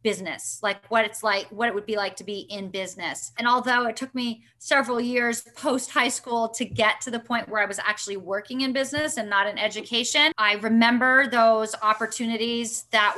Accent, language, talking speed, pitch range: American, English, 205 wpm, 215-255 Hz